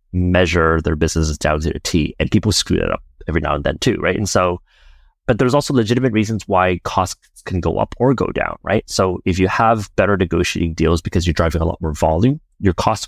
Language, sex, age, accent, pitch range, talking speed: English, male, 30-49, American, 80-105 Hz, 235 wpm